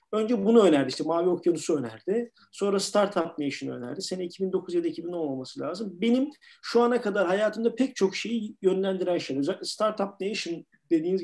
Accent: native